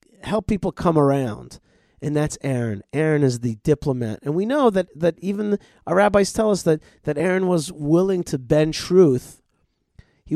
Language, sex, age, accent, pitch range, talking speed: English, male, 40-59, American, 140-180 Hz, 175 wpm